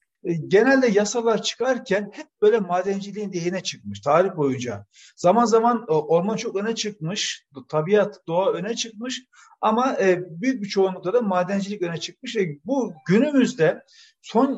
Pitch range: 190-240 Hz